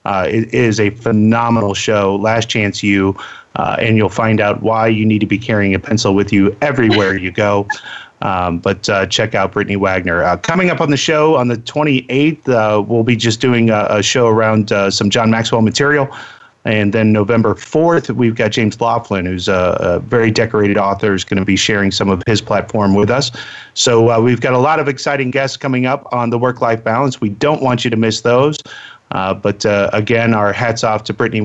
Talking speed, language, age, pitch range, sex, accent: 215 wpm, English, 30-49, 100-120 Hz, male, American